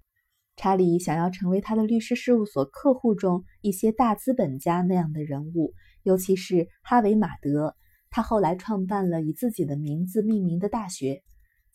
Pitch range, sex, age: 160-210 Hz, female, 20-39